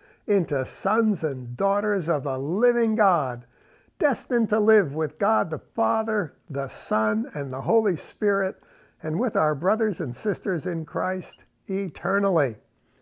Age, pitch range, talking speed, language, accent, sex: 60-79, 155-210 Hz, 140 wpm, English, American, male